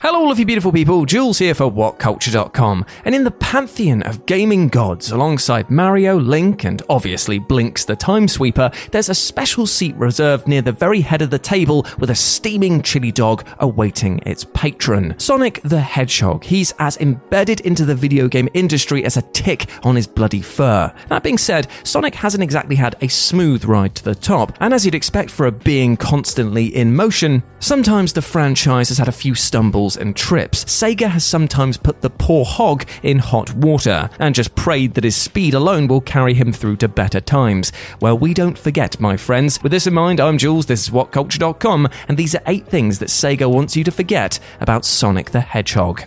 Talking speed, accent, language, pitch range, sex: 195 wpm, British, English, 115-170 Hz, male